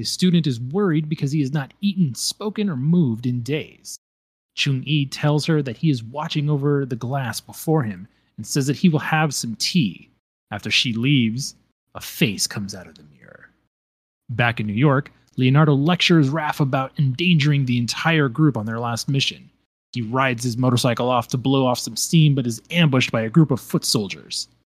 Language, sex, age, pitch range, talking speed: English, male, 30-49, 125-165 Hz, 190 wpm